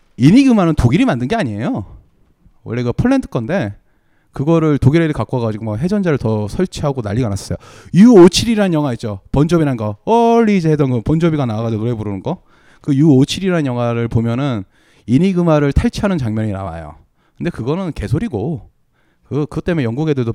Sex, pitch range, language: male, 105-165 Hz, Korean